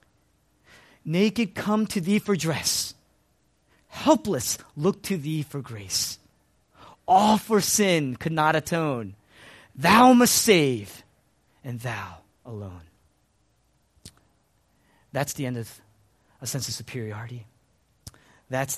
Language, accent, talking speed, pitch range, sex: English, American, 105 wpm, 110-145 Hz, male